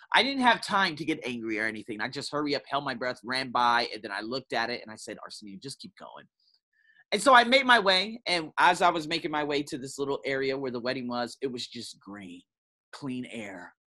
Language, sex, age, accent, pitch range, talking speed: English, male, 30-49, American, 115-165 Hz, 250 wpm